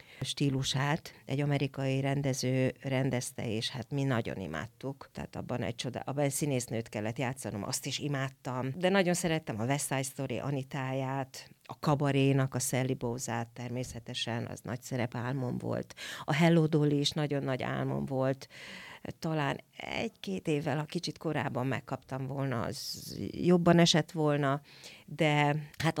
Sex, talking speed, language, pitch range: female, 145 wpm, Hungarian, 125-150 Hz